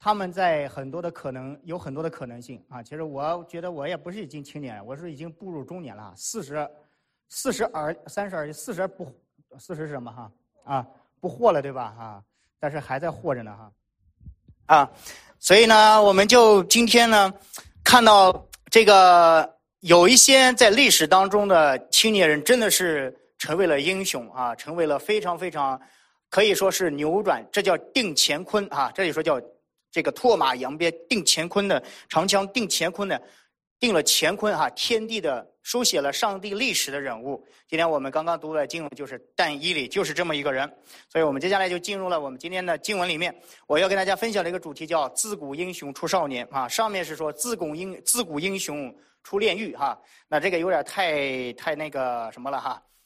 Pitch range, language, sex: 145-200 Hz, English, male